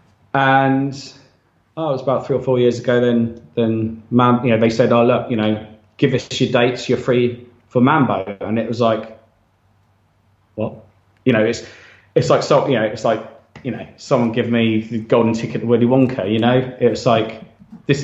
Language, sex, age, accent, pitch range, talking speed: English, male, 20-39, British, 110-130 Hz, 205 wpm